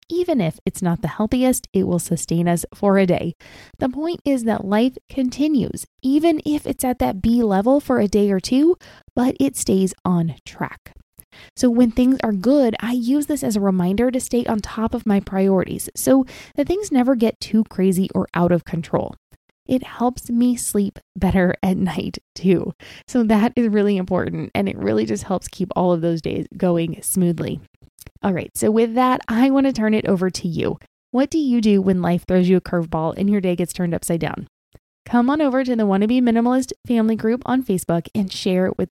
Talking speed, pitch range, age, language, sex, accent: 210 wpm, 185-255 Hz, 20-39, English, female, American